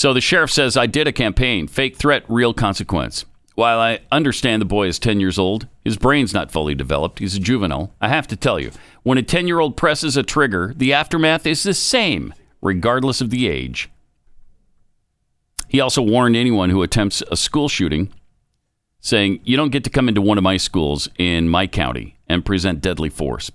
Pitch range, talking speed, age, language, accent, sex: 85-125 Hz, 195 wpm, 50-69, English, American, male